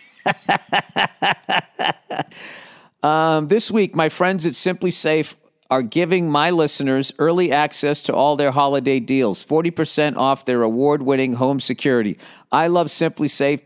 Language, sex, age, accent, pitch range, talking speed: English, male, 50-69, American, 135-170 Hz, 130 wpm